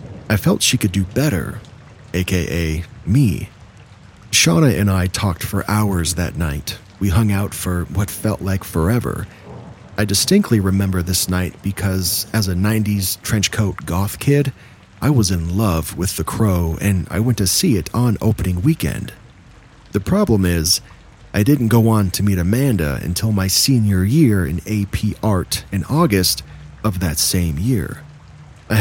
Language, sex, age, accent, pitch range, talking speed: English, male, 40-59, American, 90-115 Hz, 160 wpm